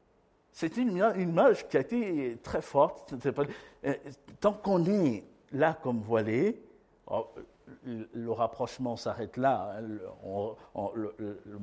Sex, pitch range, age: male, 110-155 Hz, 50-69